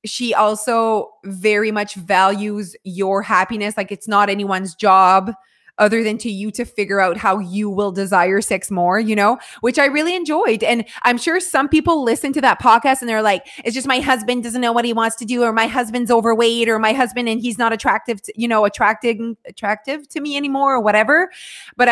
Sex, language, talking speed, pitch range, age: female, English, 205 wpm, 205-245 Hz, 20-39